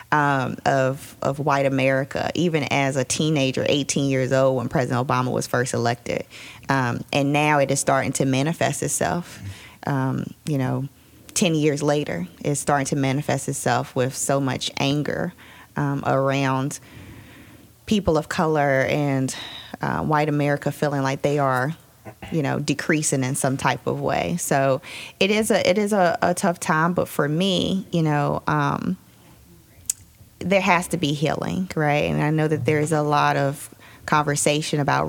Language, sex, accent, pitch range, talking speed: English, female, American, 135-170 Hz, 165 wpm